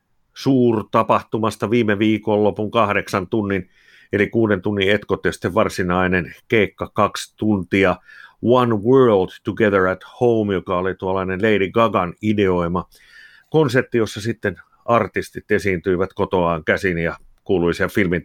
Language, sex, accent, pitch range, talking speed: Finnish, male, native, 95-115 Hz, 115 wpm